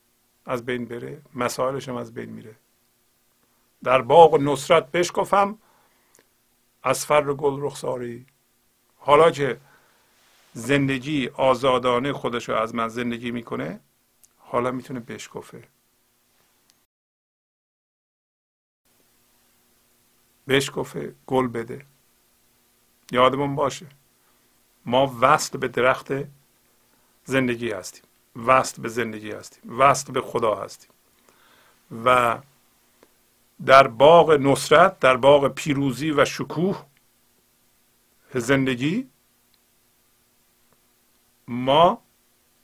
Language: Persian